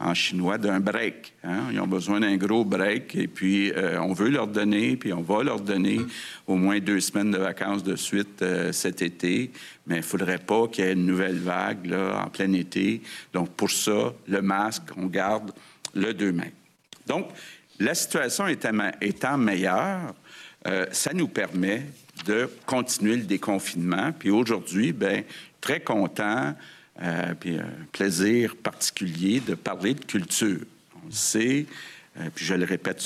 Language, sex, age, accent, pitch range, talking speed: French, male, 50-69, Canadian, 95-110 Hz, 170 wpm